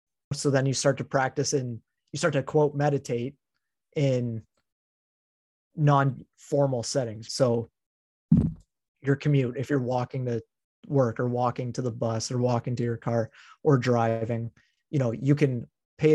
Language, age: English, 30-49